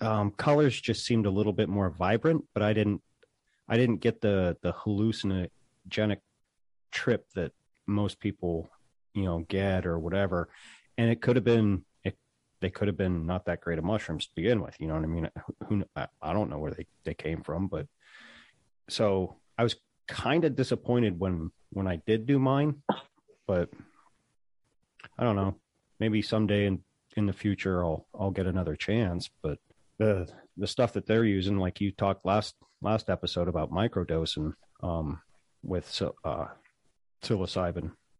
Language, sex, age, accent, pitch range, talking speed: English, male, 30-49, American, 85-105 Hz, 165 wpm